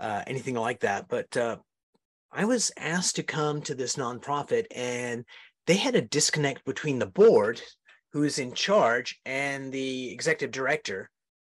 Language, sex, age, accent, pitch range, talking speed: English, male, 30-49, American, 135-180 Hz, 155 wpm